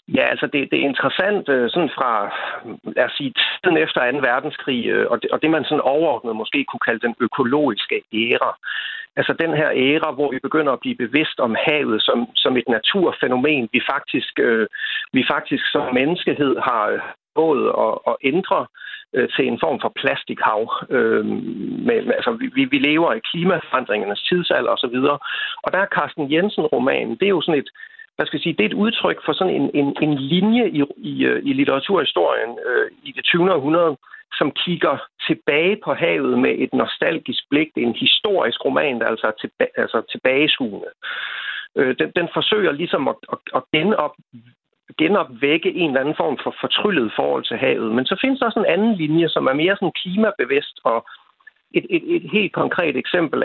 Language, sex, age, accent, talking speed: Danish, male, 60-79, native, 180 wpm